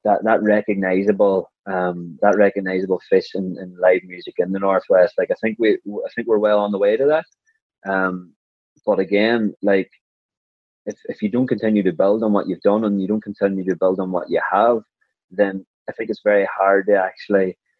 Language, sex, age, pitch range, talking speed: English, male, 20-39, 95-110 Hz, 200 wpm